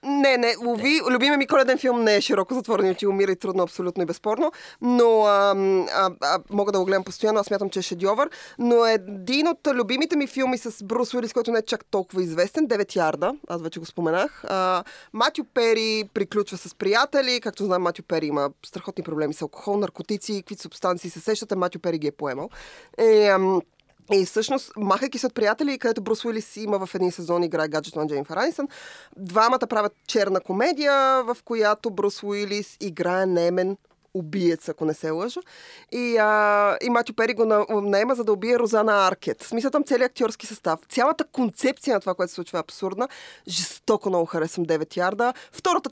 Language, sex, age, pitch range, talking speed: Bulgarian, female, 20-39, 185-250 Hz, 185 wpm